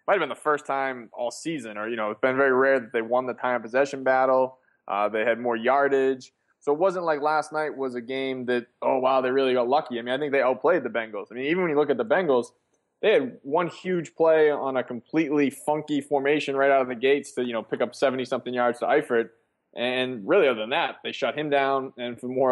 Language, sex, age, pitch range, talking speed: English, male, 20-39, 115-135 Hz, 260 wpm